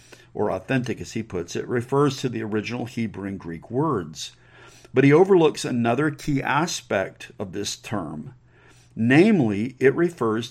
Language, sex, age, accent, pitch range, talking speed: English, male, 50-69, American, 110-135 Hz, 150 wpm